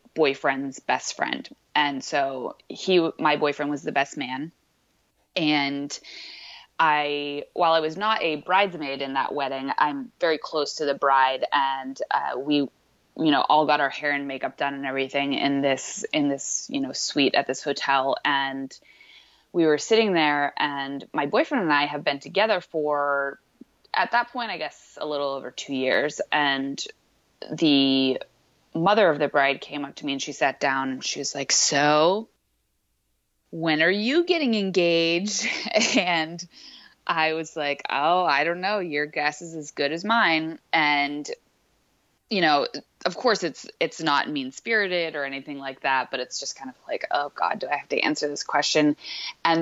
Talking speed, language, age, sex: 175 wpm, English, 20-39, female